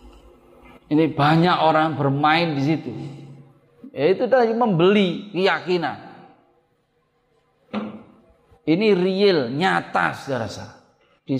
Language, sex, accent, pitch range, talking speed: Indonesian, male, native, 130-160 Hz, 80 wpm